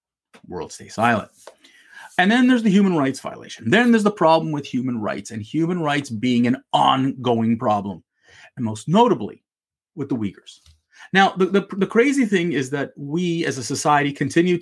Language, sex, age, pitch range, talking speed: English, male, 30-49, 130-190 Hz, 175 wpm